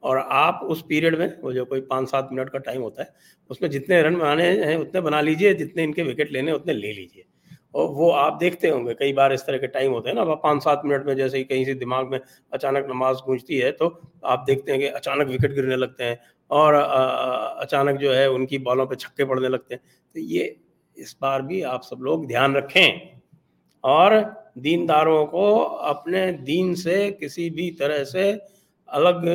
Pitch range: 130-175 Hz